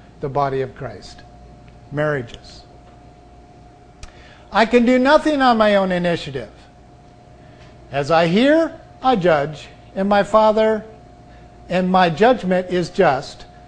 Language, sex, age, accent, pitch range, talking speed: English, male, 50-69, American, 140-205 Hz, 115 wpm